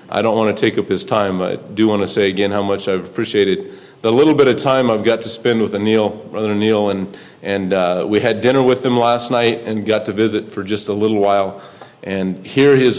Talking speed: 245 wpm